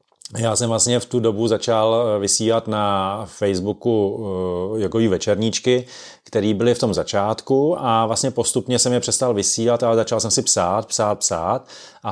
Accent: native